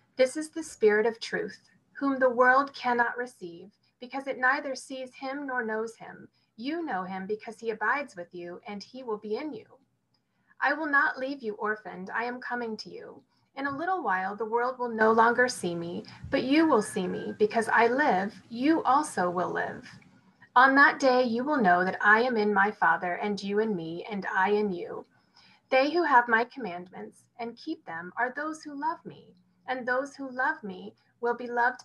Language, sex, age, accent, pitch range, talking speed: English, female, 30-49, American, 210-275 Hz, 205 wpm